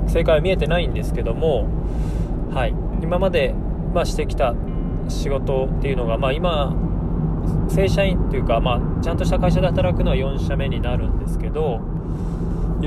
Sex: male